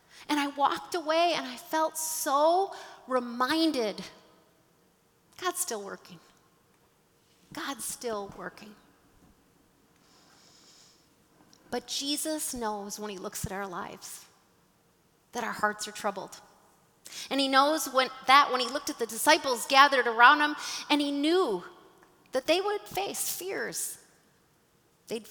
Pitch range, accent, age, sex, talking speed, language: 210-285 Hz, American, 30-49, female, 120 wpm, English